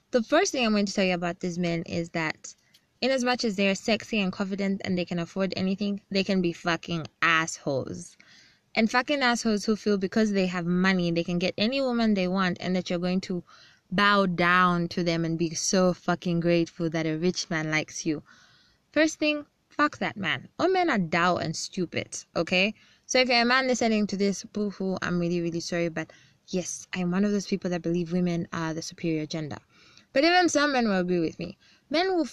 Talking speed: 215 wpm